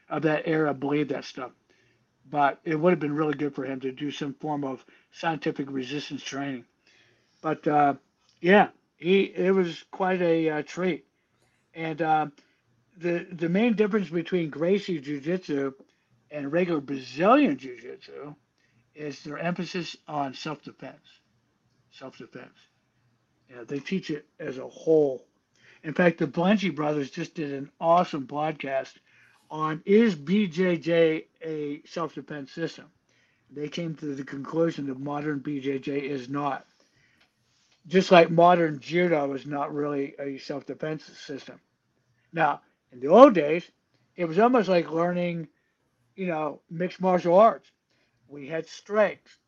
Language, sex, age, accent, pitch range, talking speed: English, male, 60-79, American, 140-175 Hz, 135 wpm